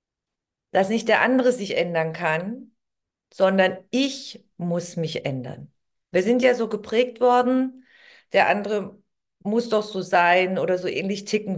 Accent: German